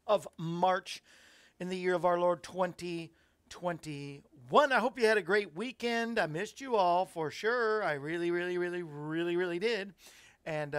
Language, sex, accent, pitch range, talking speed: English, male, American, 160-220 Hz, 165 wpm